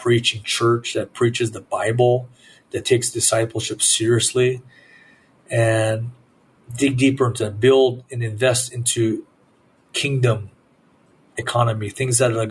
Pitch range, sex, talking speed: 115-125 Hz, male, 110 wpm